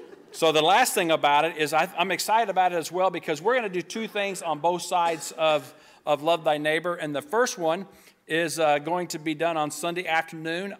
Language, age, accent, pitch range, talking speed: English, 50-69, American, 150-175 Hz, 230 wpm